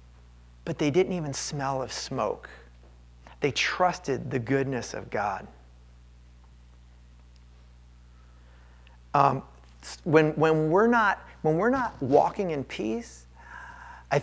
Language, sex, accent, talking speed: English, male, American, 105 wpm